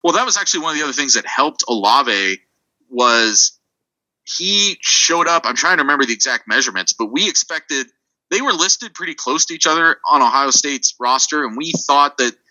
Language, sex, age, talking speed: English, male, 30-49, 200 wpm